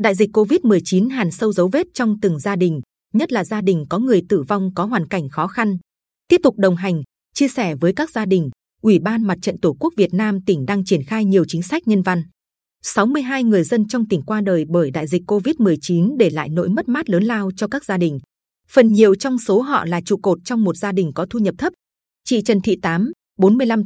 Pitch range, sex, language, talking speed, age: 175-225 Hz, female, Vietnamese, 235 wpm, 20-39